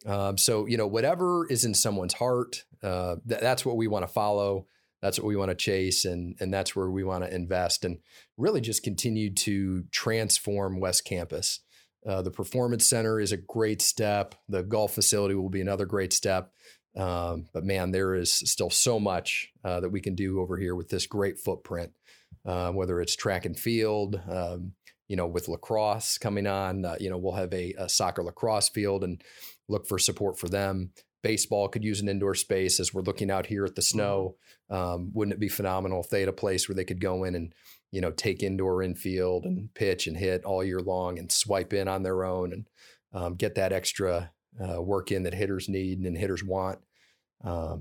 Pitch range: 90-100 Hz